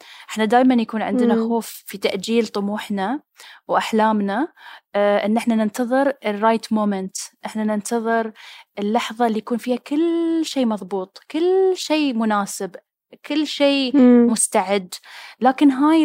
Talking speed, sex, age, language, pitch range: 120 wpm, female, 10-29, Arabic, 200-255 Hz